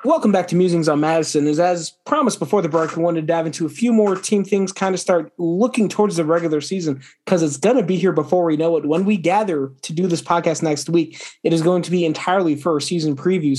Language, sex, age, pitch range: English, male, 20-39, 150-185 Hz